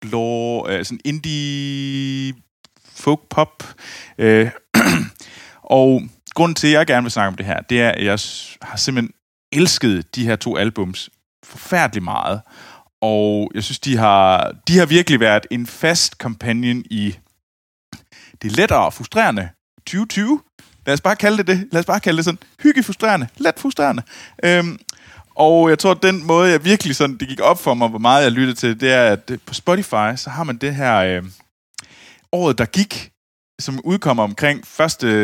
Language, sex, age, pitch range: Danish, male, 20-39, 110-165 Hz